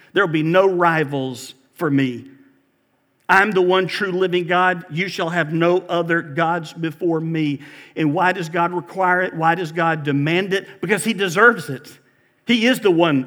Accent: American